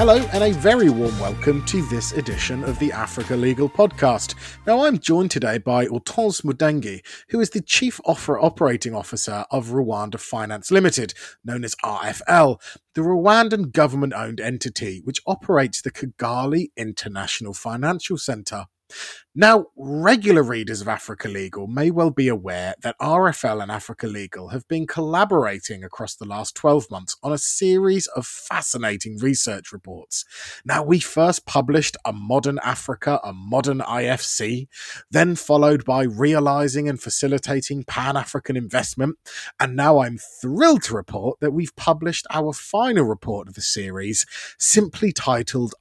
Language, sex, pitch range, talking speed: English, male, 115-155 Hz, 145 wpm